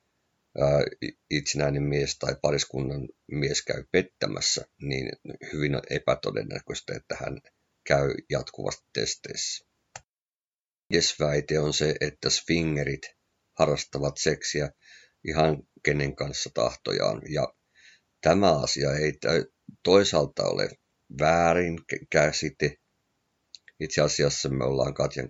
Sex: male